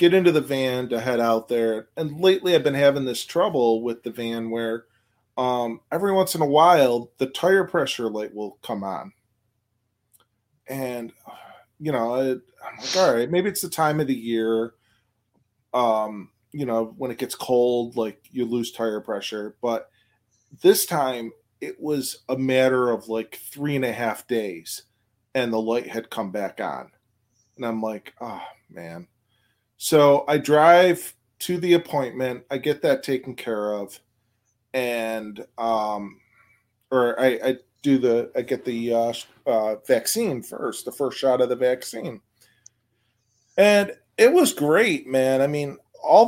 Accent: American